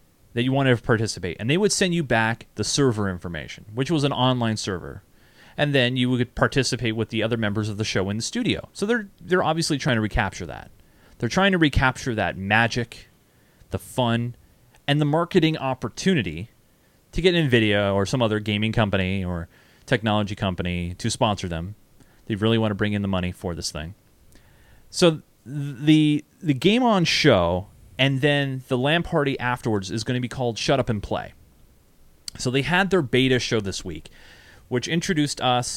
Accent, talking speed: American, 185 wpm